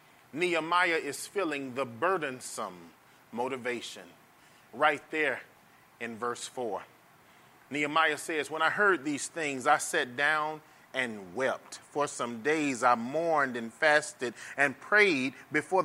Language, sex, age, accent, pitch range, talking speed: English, male, 30-49, American, 140-180 Hz, 125 wpm